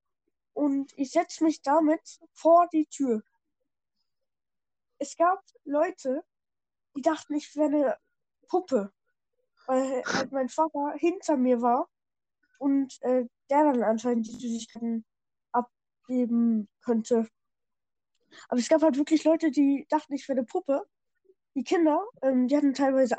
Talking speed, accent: 130 wpm, German